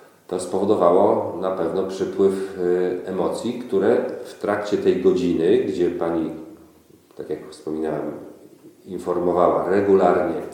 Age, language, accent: 40-59, Polish, native